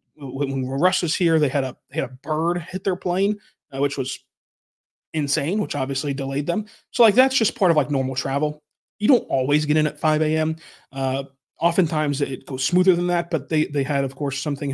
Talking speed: 215 wpm